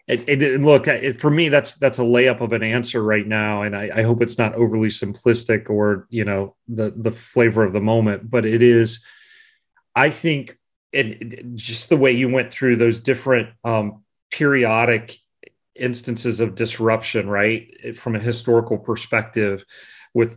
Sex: male